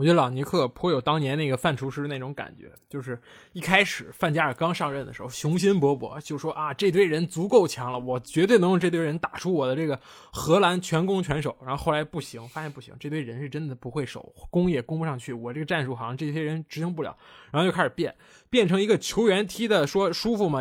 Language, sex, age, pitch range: Chinese, male, 20-39, 140-185 Hz